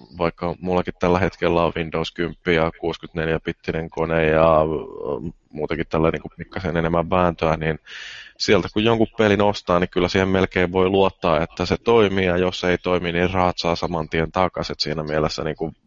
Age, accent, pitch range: 20-39, native, 80-95 Hz